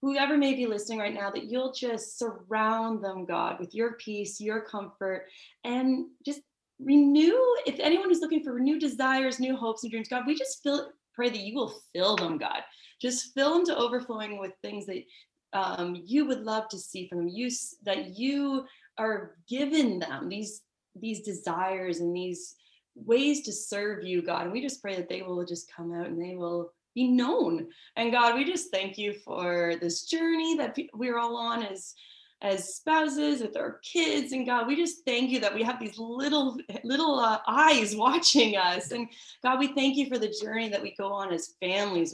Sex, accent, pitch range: female, American, 200-265 Hz